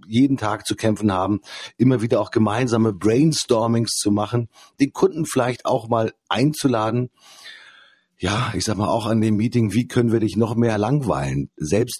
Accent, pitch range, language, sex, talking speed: German, 100-120 Hz, German, male, 170 wpm